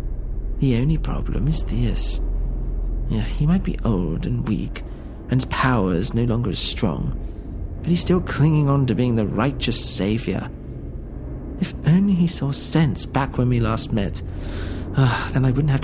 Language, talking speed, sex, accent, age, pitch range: English, 165 wpm, male, British, 40-59, 90-155 Hz